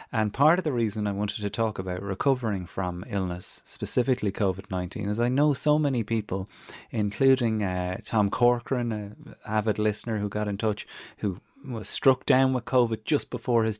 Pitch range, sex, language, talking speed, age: 100-120 Hz, male, English, 180 wpm, 30-49